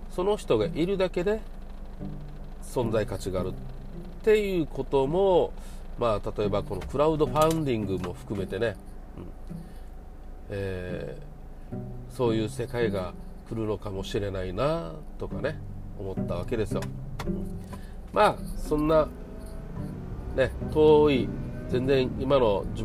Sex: male